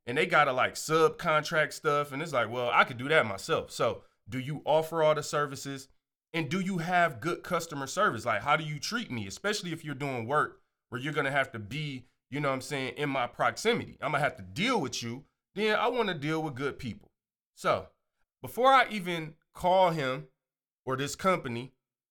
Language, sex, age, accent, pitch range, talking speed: English, male, 30-49, American, 130-170 Hz, 220 wpm